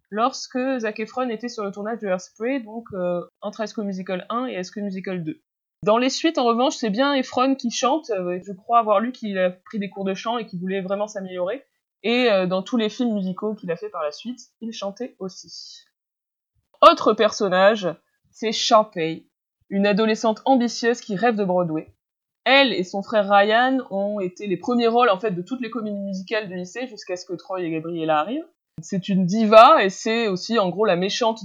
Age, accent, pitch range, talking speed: 20-39, French, 180-230 Hz, 210 wpm